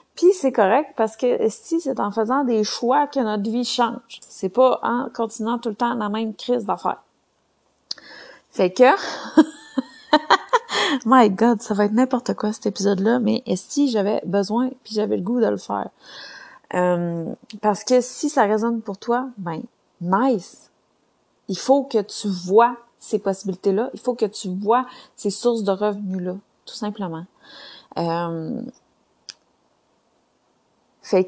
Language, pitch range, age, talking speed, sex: French, 195-245 Hz, 30-49, 155 wpm, female